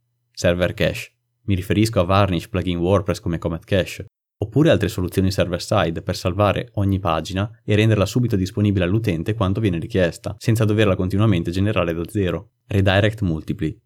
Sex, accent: male, native